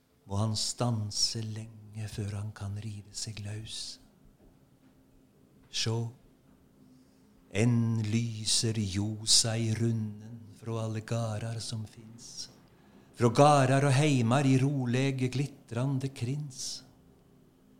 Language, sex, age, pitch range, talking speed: English, male, 60-79, 100-125 Hz, 90 wpm